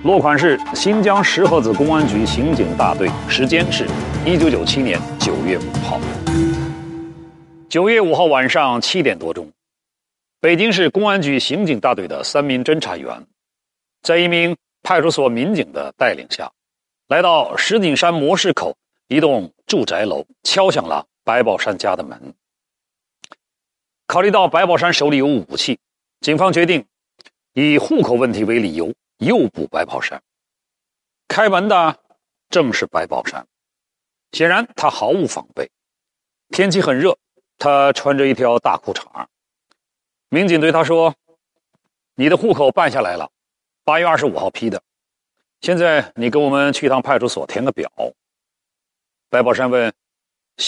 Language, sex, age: Chinese, male, 40-59